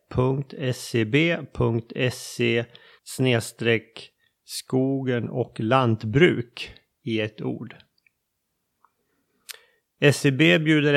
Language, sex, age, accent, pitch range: Swedish, male, 30-49, native, 120-155 Hz